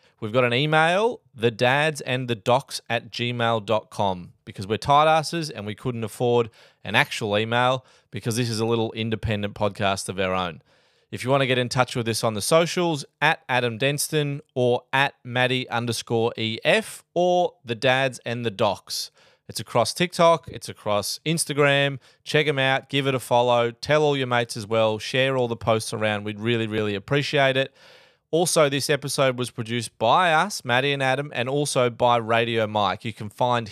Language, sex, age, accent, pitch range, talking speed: English, male, 20-39, Australian, 115-140 Hz, 185 wpm